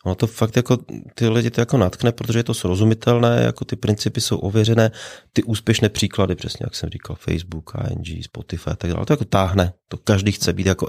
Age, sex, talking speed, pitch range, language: 30-49, male, 215 wpm, 90-115 Hz, Czech